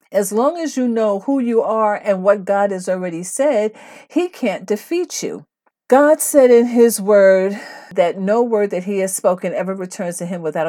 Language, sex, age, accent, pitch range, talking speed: English, female, 50-69, American, 165-220 Hz, 195 wpm